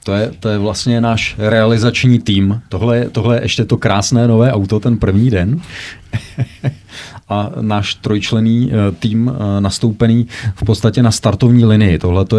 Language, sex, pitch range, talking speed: Czech, male, 105-120 Hz, 155 wpm